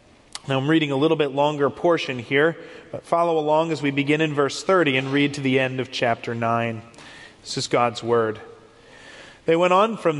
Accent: American